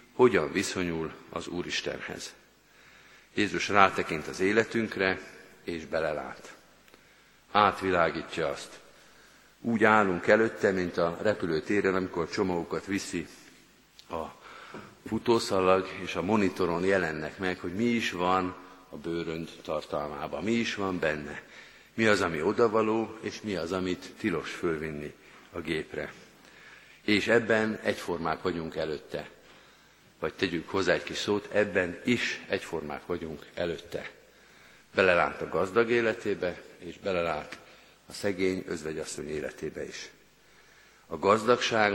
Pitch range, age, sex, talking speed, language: 90-110 Hz, 50-69, male, 115 wpm, Hungarian